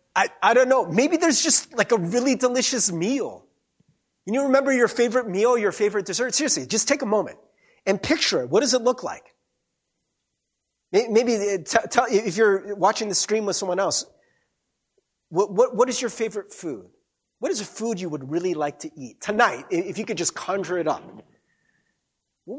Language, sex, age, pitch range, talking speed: English, male, 30-49, 155-235 Hz, 185 wpm